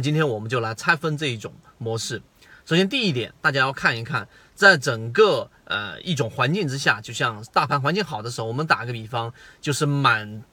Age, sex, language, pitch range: 30-49, male, Chinese, 120-175 Hz